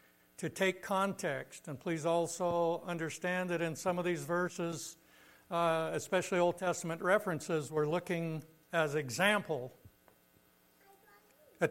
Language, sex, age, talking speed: English, male, 60-79, 120 wpm